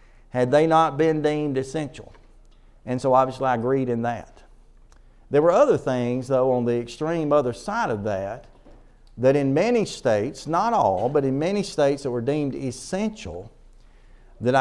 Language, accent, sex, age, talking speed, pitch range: English, American, male, 50-69, 165 wpm, 130-185 Hz